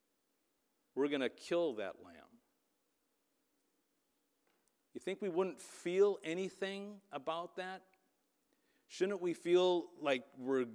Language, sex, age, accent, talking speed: English, male, 50-69, American, 105 wpm